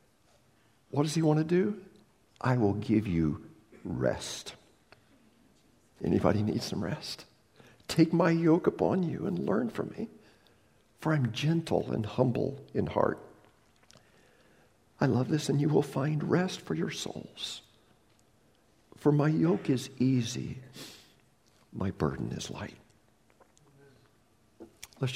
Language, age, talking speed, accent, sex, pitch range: English, 60-79, 125 wpm, American, male, 85-130 Hz